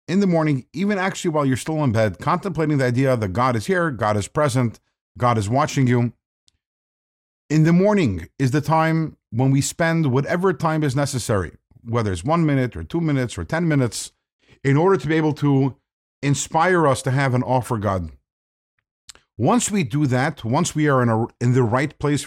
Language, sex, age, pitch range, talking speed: English, male, 50-69, 125-160 Hz, 195 wpm